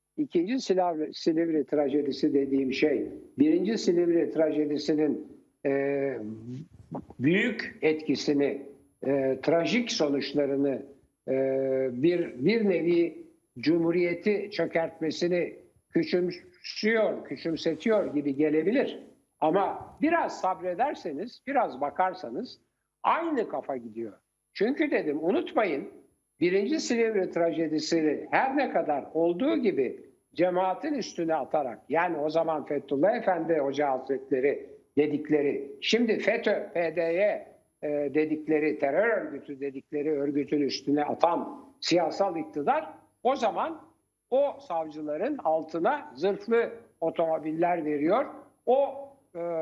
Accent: native